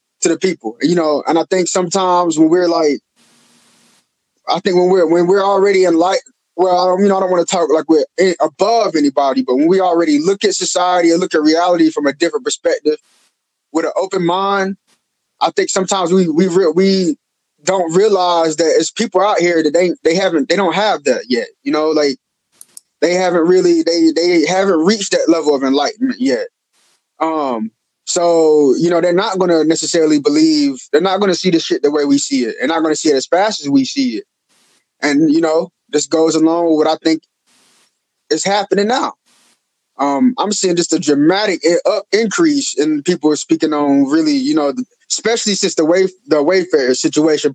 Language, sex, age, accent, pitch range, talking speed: English, male, 20-39, American, 160-200 Hz, 200 wpm